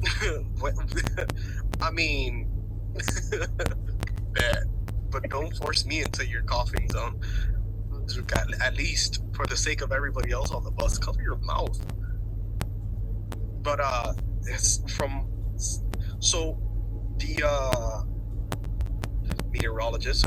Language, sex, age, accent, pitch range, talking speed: English, male, 20-39, American, 100-110 Hz, 105 wpm